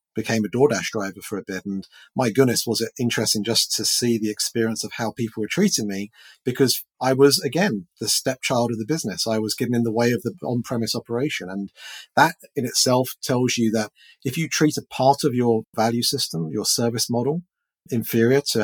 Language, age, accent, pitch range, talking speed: English, 40-59, British, 105-130 Hz, 205 wpm